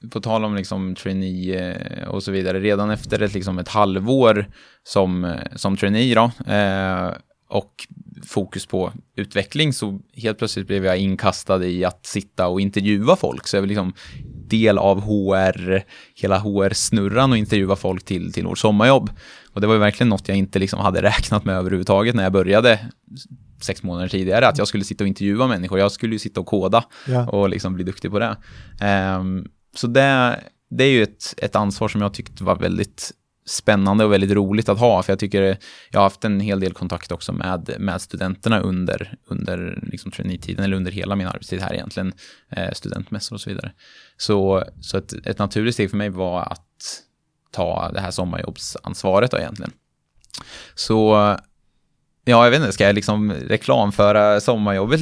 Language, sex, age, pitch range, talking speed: Swedish, male, 20-39, 95-110 Hz, 180 wpm